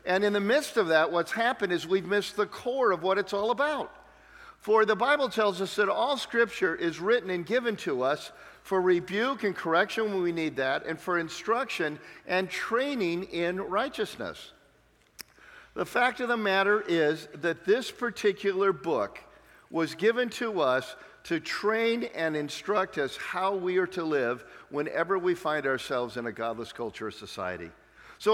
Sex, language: male, English